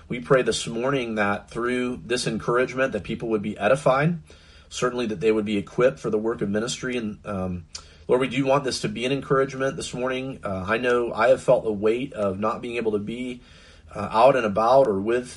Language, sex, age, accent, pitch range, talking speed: English, male, 40-59, American, 95-120 Hz, 225 wpm